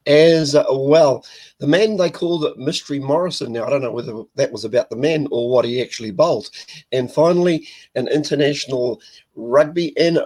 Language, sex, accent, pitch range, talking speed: English, male, Australian, 115-145 Hz, 175 wpm